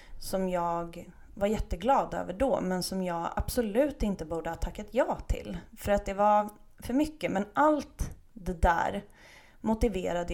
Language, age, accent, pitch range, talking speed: Swedish, 30-49, native, 175-230 Hz, 155 wpm